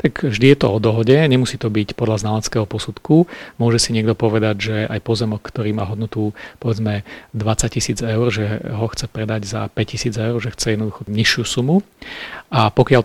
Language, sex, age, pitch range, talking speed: Slovak, male, 40-59, 110-125 Hz, 195 wpm